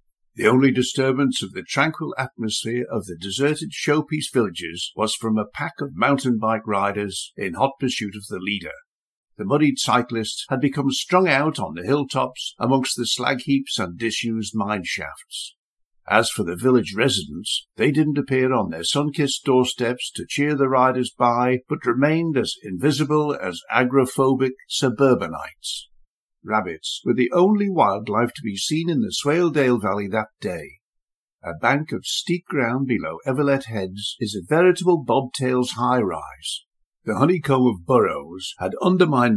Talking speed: 155 wpm